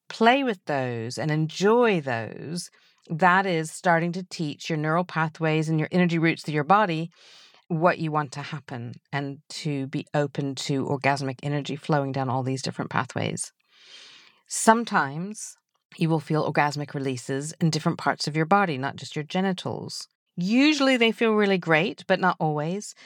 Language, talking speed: English, 165 wpm